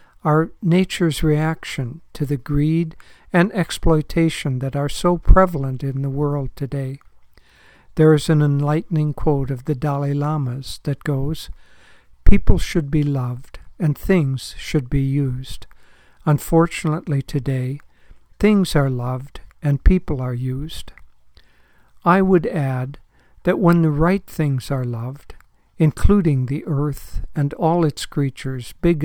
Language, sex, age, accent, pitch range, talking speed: English, male, 60-79, American, 135-160 Hz, 130 wpm